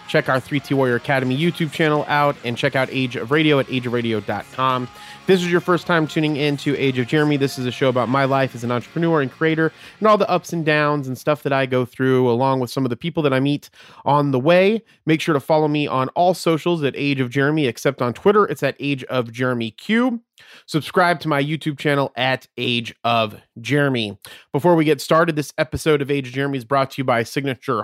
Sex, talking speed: male, 235 wpm